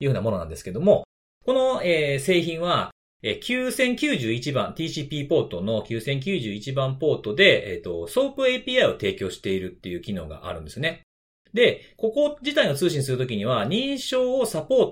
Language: Japanese